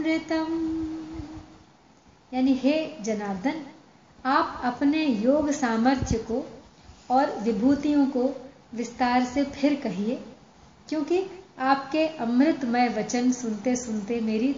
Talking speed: 90 wpm